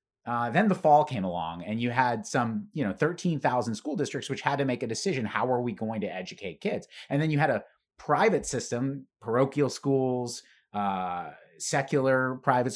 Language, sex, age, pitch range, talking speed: English, male, 30-49, 110-135 Hz, 190 wpm